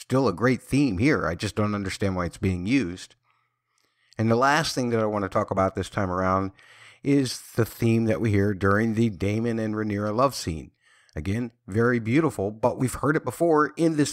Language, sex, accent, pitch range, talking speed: English, male, American, 100-130 Hz, 210 wpm